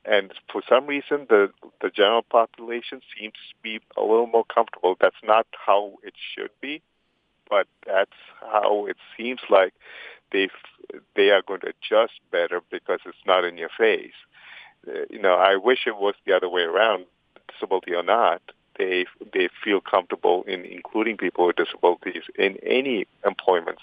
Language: English